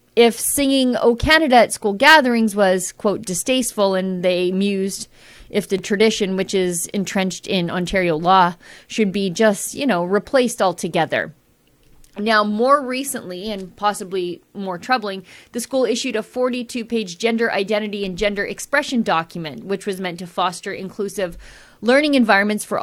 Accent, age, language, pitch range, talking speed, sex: American, 30-49, English, 190-240 Hz, 145 wpm, female